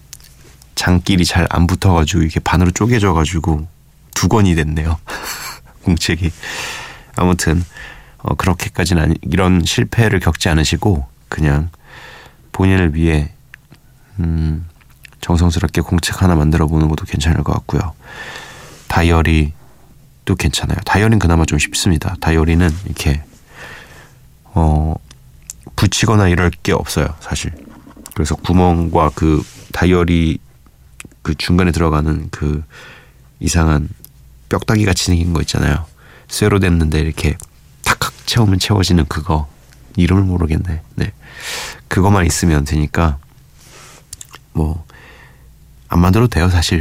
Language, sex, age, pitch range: Korean, male, 30-49, 80-95 Hz